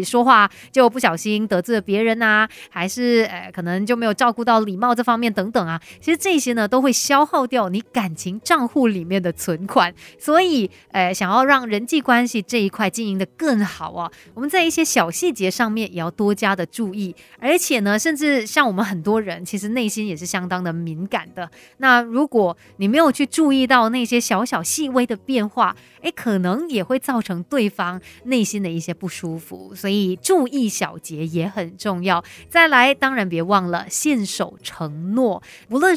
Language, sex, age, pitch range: Chinese, female, 30-49, 185-255 Hz